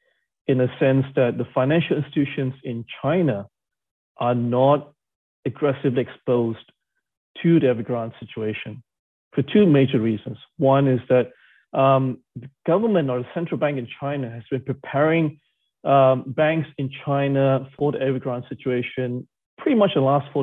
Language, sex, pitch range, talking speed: English, male, 125-150 Hz, 145 wpm